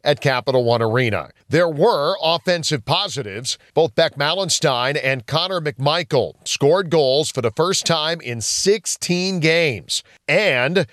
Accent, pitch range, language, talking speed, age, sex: American, 125-170 Hz, English, 130 wpm, 40-59, male